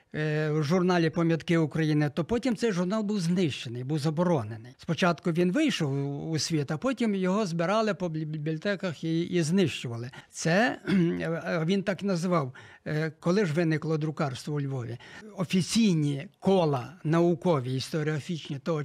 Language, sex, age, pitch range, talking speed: Ukrainian, male, 60-79, 155-205 Hz, 130 wpm